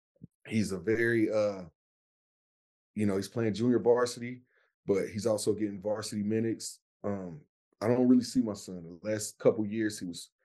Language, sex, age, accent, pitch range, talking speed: English, male, 30-49, American, 100-120 Hz, 165 wpm